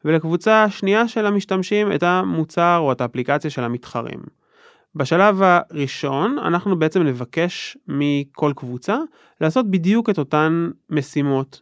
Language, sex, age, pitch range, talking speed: Hebrew, male, 20-39, 135-190 Hz, 120 wpm